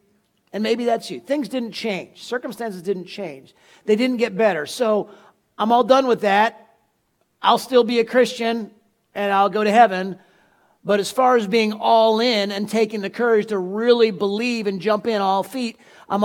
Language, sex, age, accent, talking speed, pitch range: English, male, 40-59, American, 185 wpm, 200-245 Hz